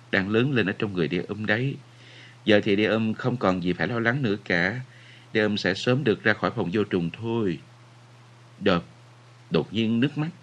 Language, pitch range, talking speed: Vietnamese, 105-130 Hz, 215 wpm